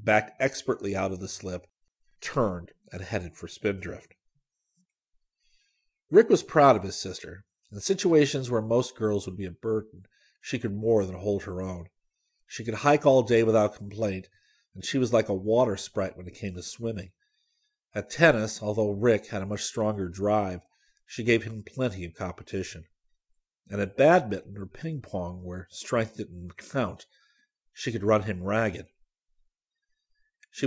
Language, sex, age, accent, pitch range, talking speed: English, male, 50-69, American, 95-125 Hz, 160 wpm